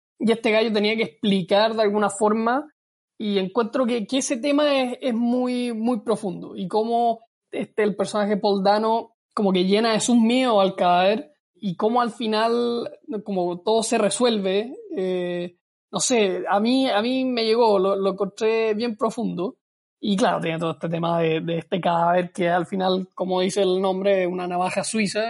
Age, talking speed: 20-39, 185 wpm